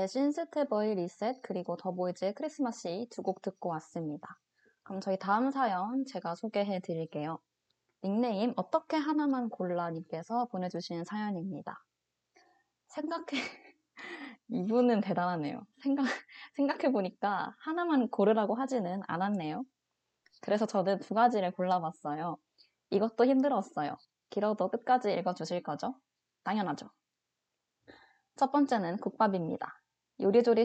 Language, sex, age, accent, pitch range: Korean, female, 20-39, native, 180-245 Hz